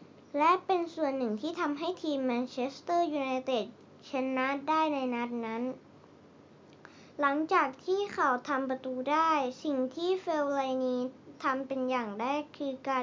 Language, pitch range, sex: Thai, 245-310 Hz, male